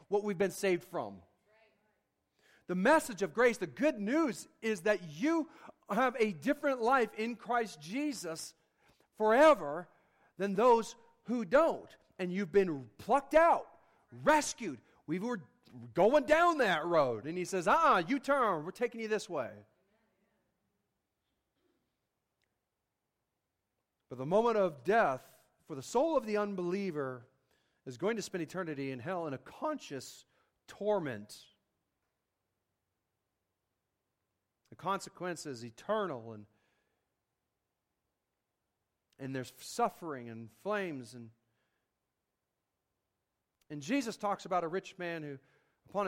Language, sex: English, male